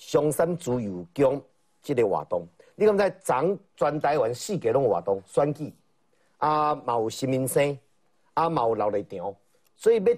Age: 50-69